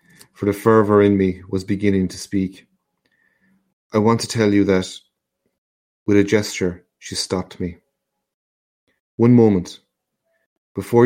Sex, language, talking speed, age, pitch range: male, English, 130 wpm, 30-49, 90-105 Hz